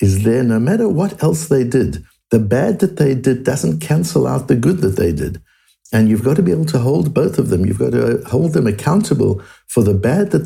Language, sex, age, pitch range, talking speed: English, male, 60-79, 95-130 Hz, 240 wpm